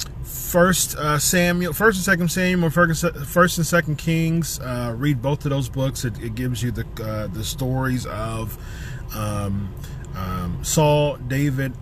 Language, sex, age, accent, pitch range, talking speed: English, male, 30-49, American, 120-145 Hz, 150 wpm